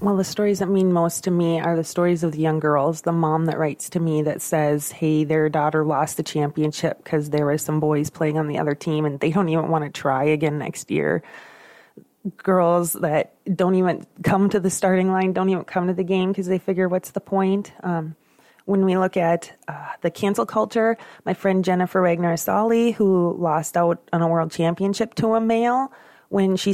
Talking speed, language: 215 wpm, English